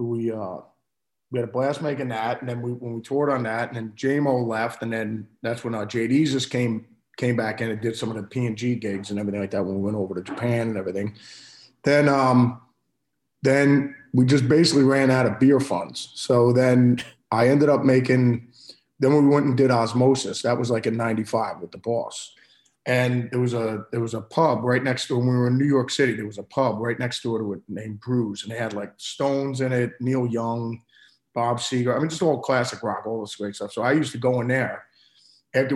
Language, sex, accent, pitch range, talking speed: English, male, American, 115-130 Hz, 230 wpm